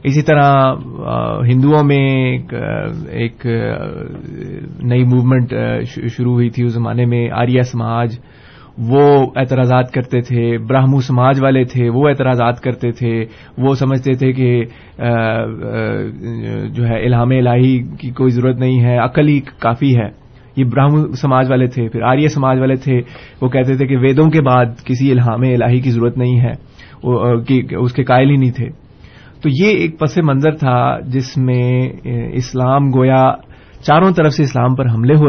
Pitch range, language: 120-135 Hz, Urdu